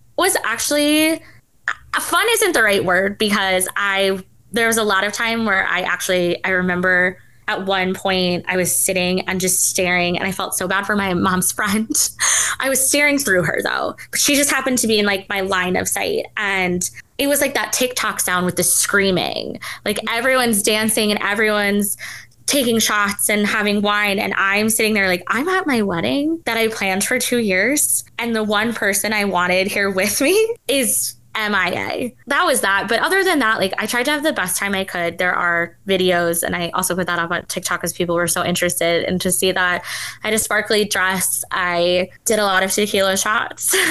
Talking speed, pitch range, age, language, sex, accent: 205 wpm, 185-245 Hz, 20-39, English, female, American